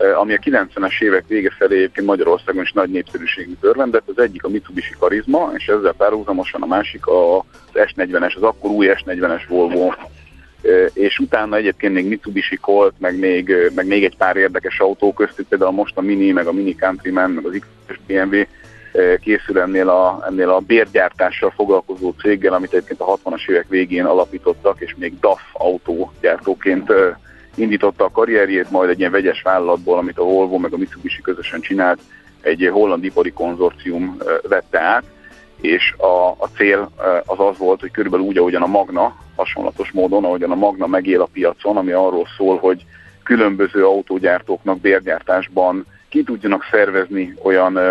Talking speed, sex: 160 wpm, male